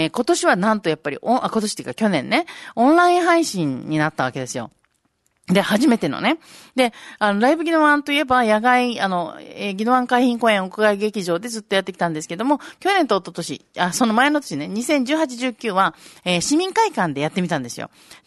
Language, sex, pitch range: Japanese, female, 180-290 Hz